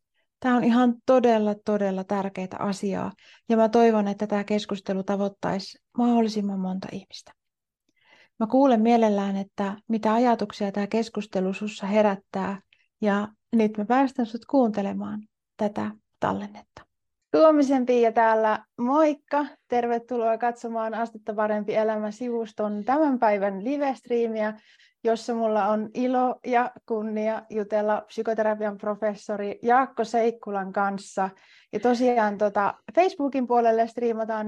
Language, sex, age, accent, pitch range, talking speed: Finnish, female, 30-49, native, 205-240 Hz, 115 wpm